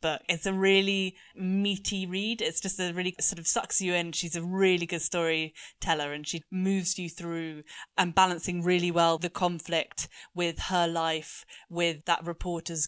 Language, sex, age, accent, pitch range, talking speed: English, female, 10-29, British, 160-180 Hz, 170 wpm